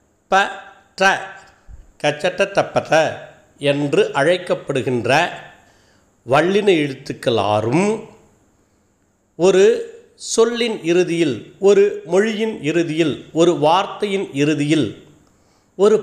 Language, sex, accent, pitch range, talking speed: Tamil, male, native, 140-210 Hz, 65 wpm